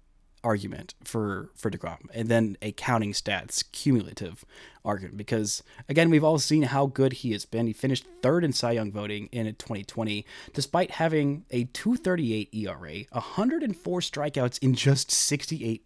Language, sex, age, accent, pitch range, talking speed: English, male, 30-49, American, 105-145 Hz, 150 wpm